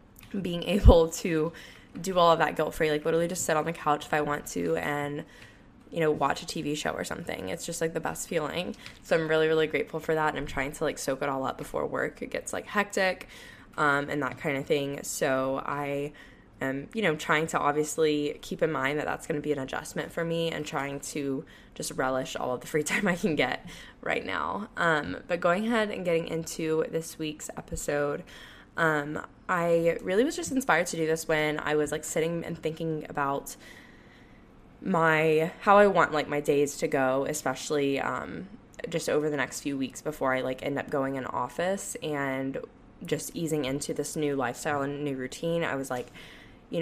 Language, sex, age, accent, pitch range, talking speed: English, female, 10-29, American, 140-165 Hz, 210 wpm